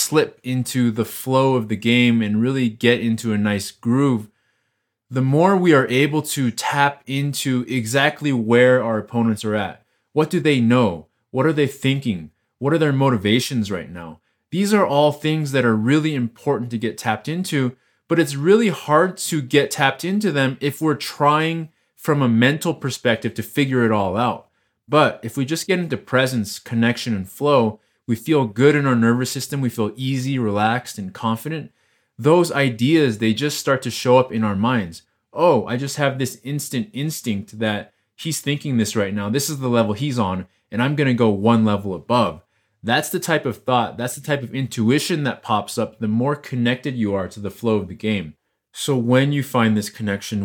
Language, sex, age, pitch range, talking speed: English, male, 20-39, 110-140 Hz, 195 wpm